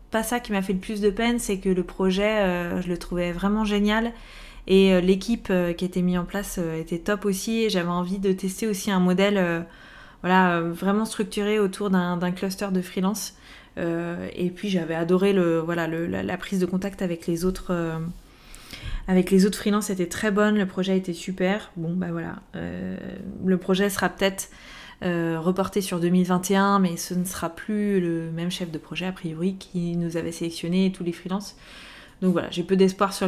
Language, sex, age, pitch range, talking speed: French, female, 20-39, 175-200 Hz, 210 wpm